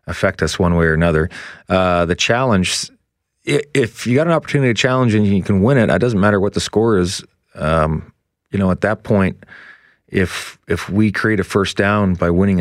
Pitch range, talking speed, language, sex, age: 85-95 Hz, 205 wpm, English, male, 30-49